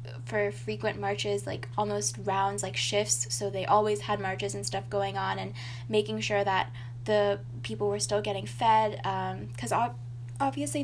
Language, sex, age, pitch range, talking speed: English, female, 10-29, 105-125 Hz, 165 wpm